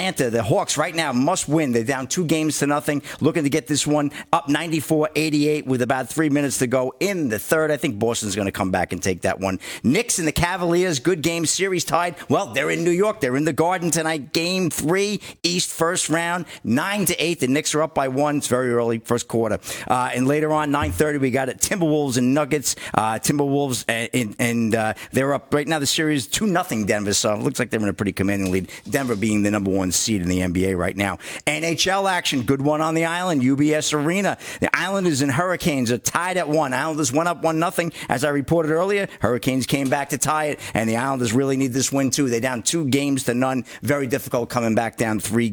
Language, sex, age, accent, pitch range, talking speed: English, male, 50-69, American, 115-155 Hz, 230 wpm